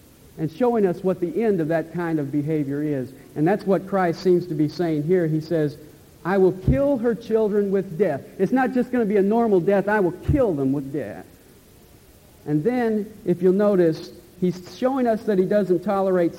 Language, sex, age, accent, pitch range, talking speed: English, male, 50-69, American, 145-200 Hz, 210 wpm